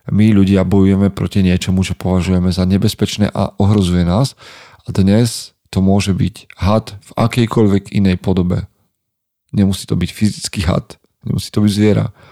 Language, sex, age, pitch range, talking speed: Slovak, male, 40-59, 95-120 Hz, 150 wpm